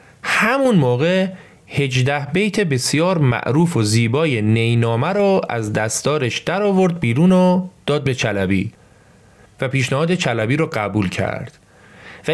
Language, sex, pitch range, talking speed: Persian, male, 115-165 Hz, 115 wpm